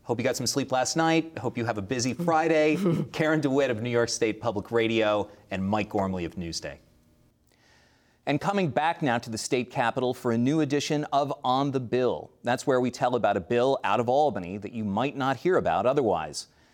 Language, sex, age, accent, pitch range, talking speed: English, male, 30-49, American, 100-140 Hz, 210 wpm